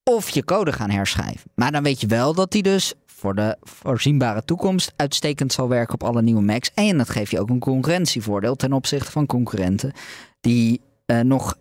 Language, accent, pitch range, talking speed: Dutch, Dutch, 115-150 Hz, 195 wpm